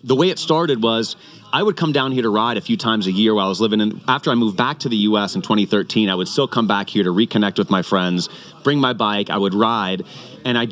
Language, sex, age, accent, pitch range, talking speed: English, male, 30-49, American, 105-125 Hz, 280 wpm